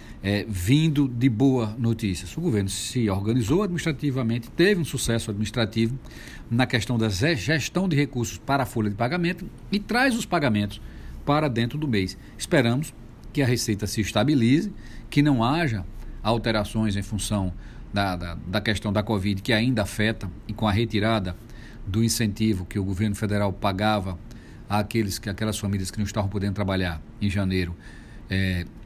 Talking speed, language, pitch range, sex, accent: 155 wpm, Portuguese, 105-125 Hz, male, Brazilian